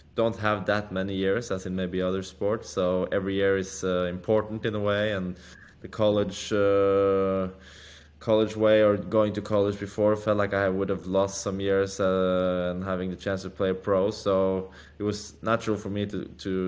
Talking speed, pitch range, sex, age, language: 200 wpm, 95-105 Hz, male, 20-39, English